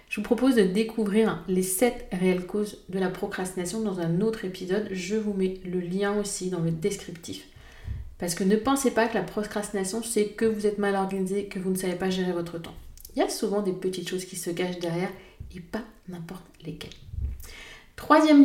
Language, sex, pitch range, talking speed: French, female, 180-225 Hz, 205 wpm